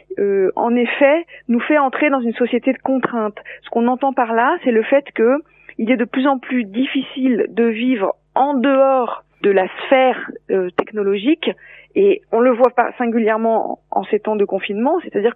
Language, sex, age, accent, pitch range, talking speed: French, female, 40-59, French, 210-280 Hz, 190 wpm